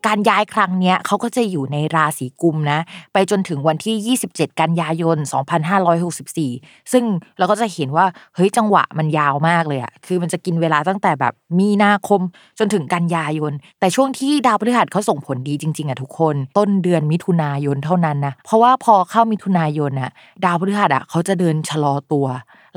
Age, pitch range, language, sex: 20-39, 160-220 Hz, Thai, female